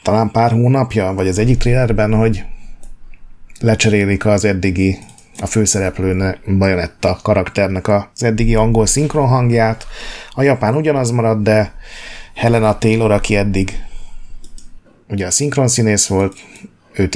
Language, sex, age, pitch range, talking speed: Hungarian, male, 30-49, 95-110 Hz, 115 wpm